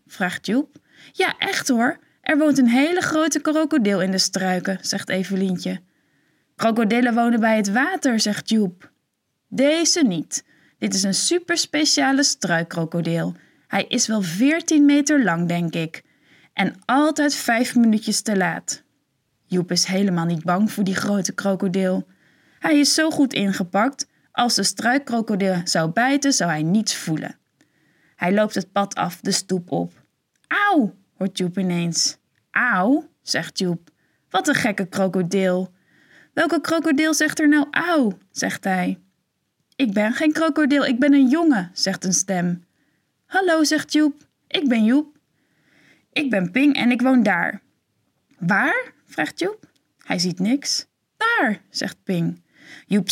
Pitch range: 185-285 Hz